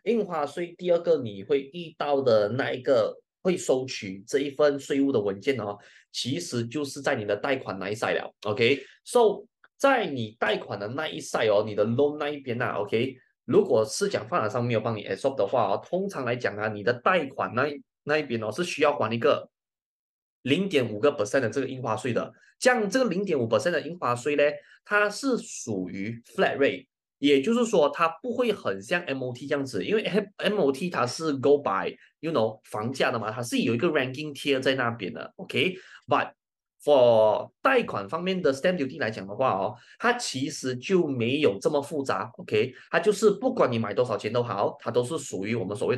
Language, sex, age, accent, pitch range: Chinese, male, 20-39, native, 120-190 Hz